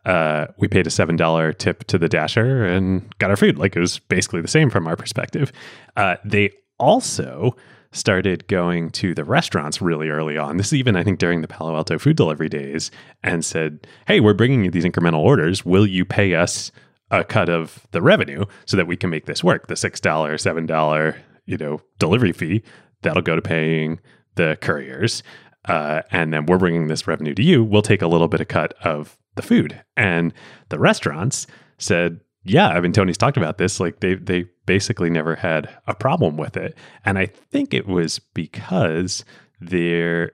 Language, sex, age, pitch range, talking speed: English, male, 30-49, 80-105 Hz, 195 wpm